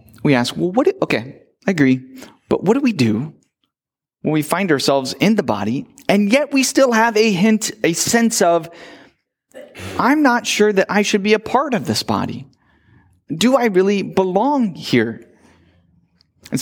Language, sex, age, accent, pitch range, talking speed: English, male, 30-49, American, 155-215 Hz, 170 wpm